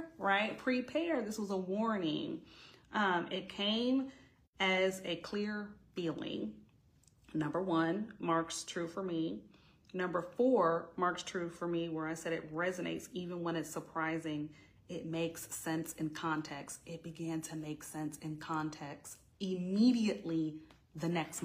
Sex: female